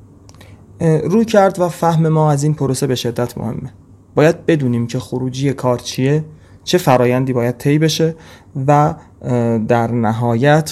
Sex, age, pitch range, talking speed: male, 30-49, 115-155 Hz, 140 wpm